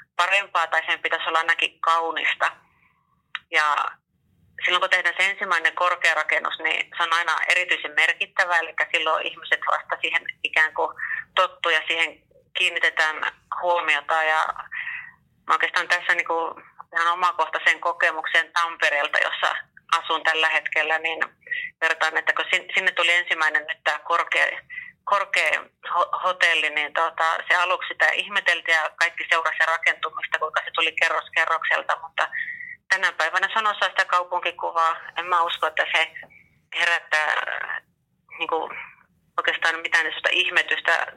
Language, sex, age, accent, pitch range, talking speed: Finnish, female, 30-49, native, 165-190 Hz, 130 wpm